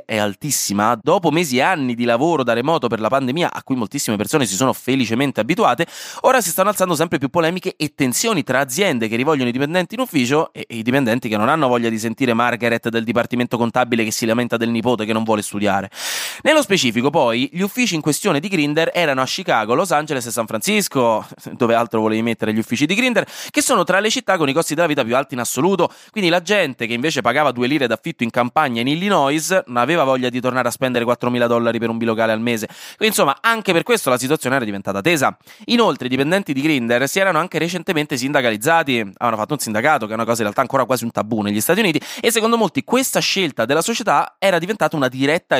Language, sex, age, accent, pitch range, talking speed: Italian, male, 20-39, native, 115-180 Hz, 230 wpm